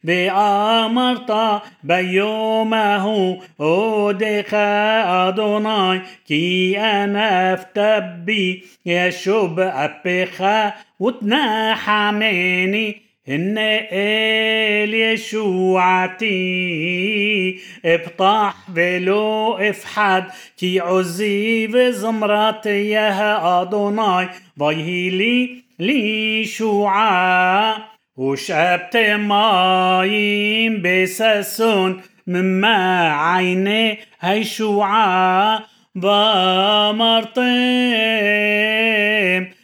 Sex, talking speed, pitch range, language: male, 50 wpm, 185-220 Hz, Hebrew